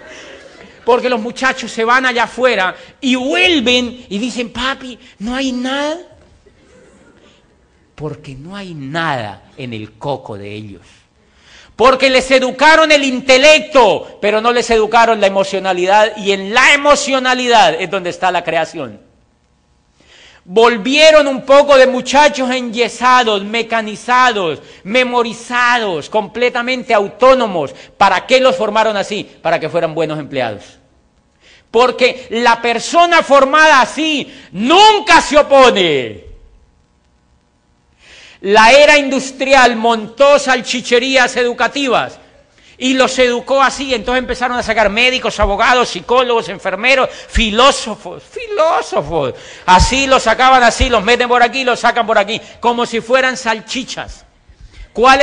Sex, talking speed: male, 120 wpm